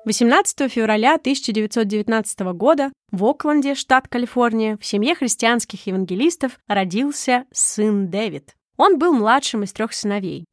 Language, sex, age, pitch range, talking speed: Russian, female, 20-39, 205-265 Hz, 120 wpm